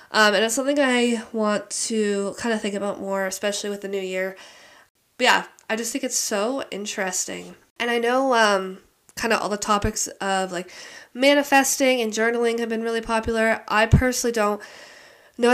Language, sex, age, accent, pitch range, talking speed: English, female, 20-39, American, 190-225 Hz, 180 wpm